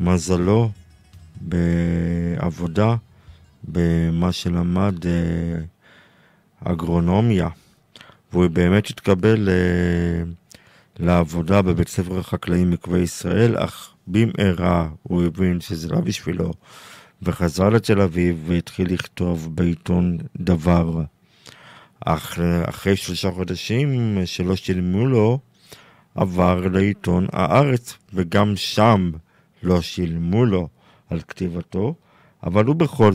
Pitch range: 90-105 Hz